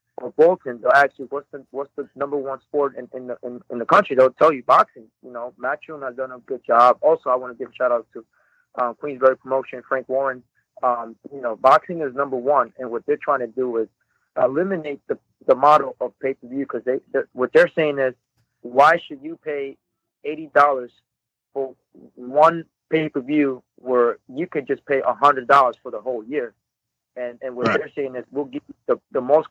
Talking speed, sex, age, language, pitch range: 205 wpm, male, 30-49, English, 125-145 Hz